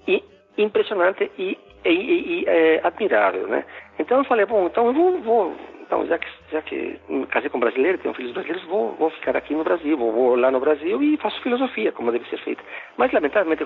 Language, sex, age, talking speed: Portuguese, male, 50-69, 225 wpm